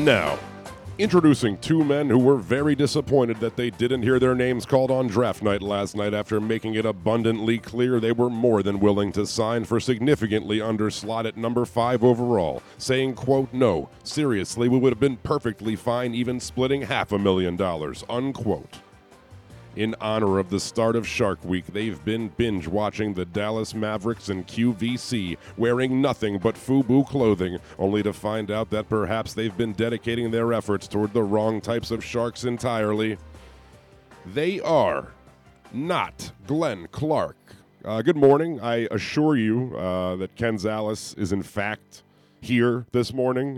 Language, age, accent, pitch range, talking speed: English, 40-59, American, 100-120 Hz, 160 wpm